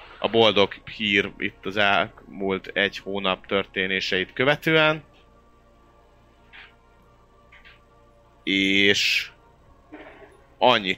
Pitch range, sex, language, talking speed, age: 90-115 Hz, male, Hungarian, 65 wpm, 30-49